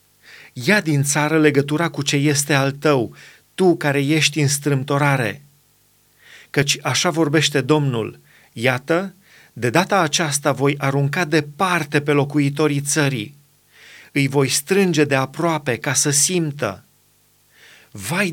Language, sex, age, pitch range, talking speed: Romanian, male, 40-59, 140-175 Hz, 120 wpm